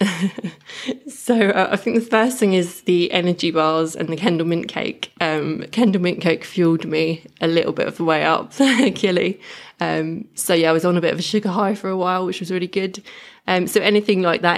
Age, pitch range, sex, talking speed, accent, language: 20-39, 165-200 Hz, female, 220 wpm, British, English